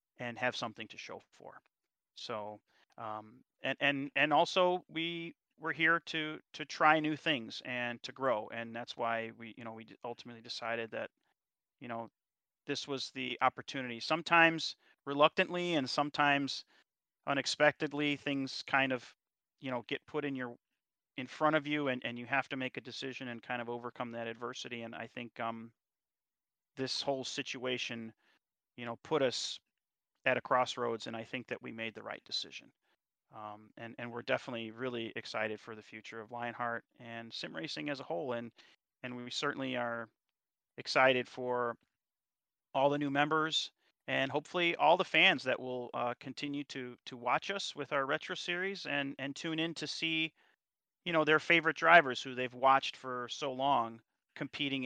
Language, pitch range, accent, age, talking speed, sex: English, 120-145 Hz, American, 30-49, 170 wpm, male